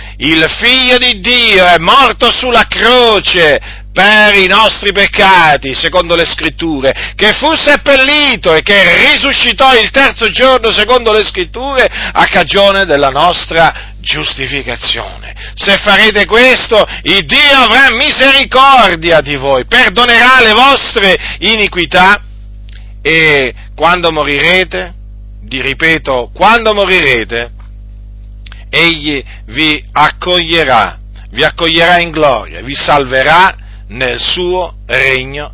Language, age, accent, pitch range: Italian, 50-69, native, 125-205 Hz